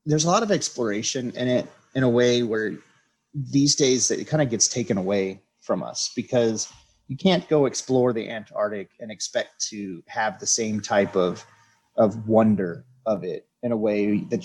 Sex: male